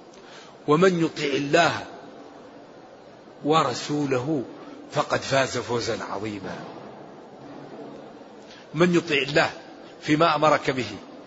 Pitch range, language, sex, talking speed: 150-205 Hz, Arabic, male, 75 wpm